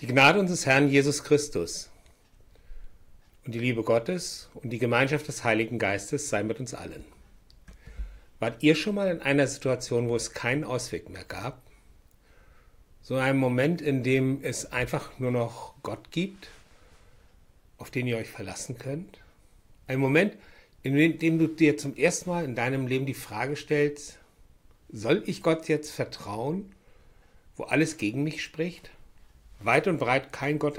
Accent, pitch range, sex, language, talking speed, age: German, 115-145 Hz, male, German, 155 wpm, 60-79